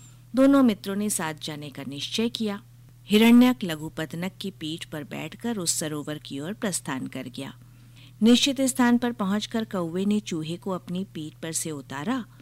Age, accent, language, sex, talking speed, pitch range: 50-69, native, Hindi, female, 160 wpm, 140-210 Hz